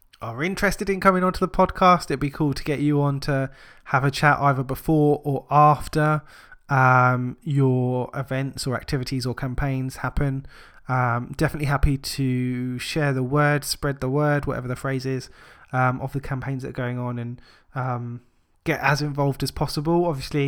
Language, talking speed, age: English, 180 wpm, 20-39